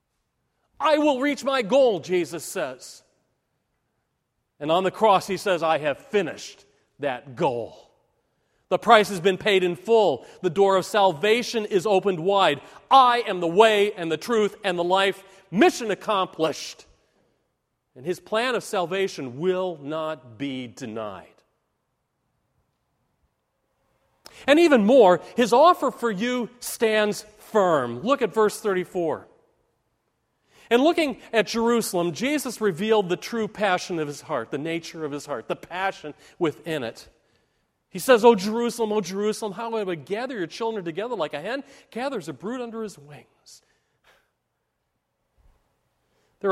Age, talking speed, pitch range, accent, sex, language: 40-59, 140 wpm, 155-220 Hz, American, male, English